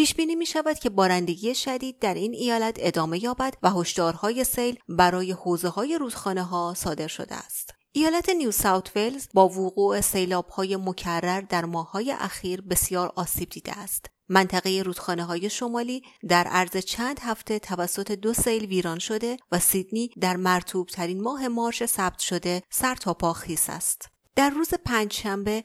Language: Persian